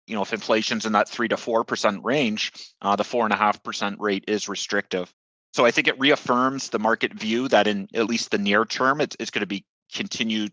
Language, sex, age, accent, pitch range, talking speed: English, male, 30-49, American, 105-125 Hz, 240 wpm